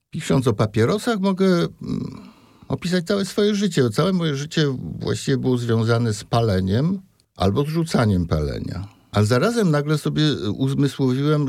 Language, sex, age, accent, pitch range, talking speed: Polish, male, 60-79, native, 100-135 Hz, 130 wpm